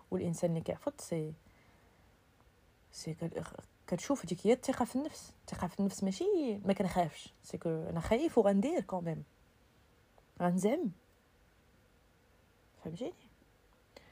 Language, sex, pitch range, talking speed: Arabic, female, 170-210 Hz, 100 wpm